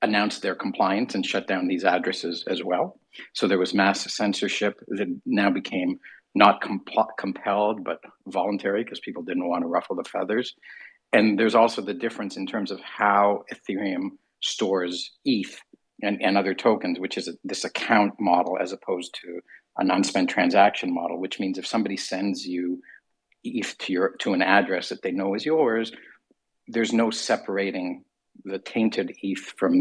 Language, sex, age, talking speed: English, male, 50-69, 170 wpm